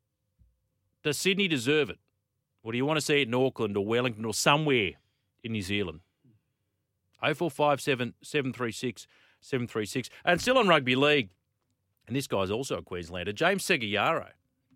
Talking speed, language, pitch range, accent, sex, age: 145 wpm, English, 100-130 Hz, Australian, male, 40-59